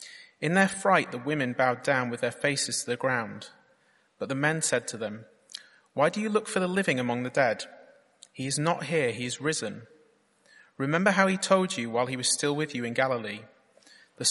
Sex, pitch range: male, 120-155 Hz